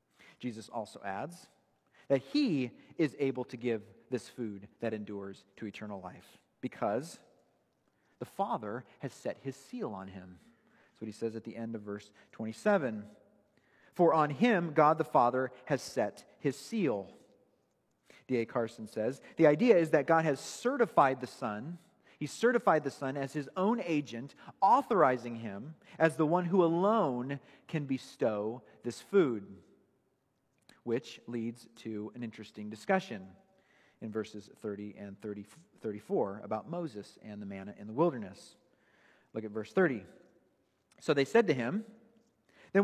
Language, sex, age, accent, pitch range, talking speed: English, male, 40-59, American, 110-170 Hz, 145 wpm